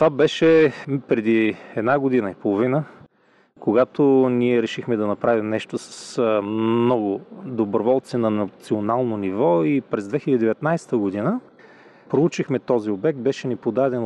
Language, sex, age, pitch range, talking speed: Bulgarian, male, 30-49, 115-140 Hz, 125 wpm